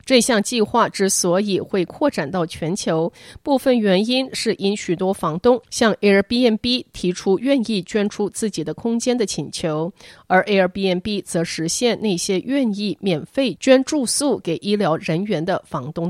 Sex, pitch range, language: female, 175-230 Hz, Chinese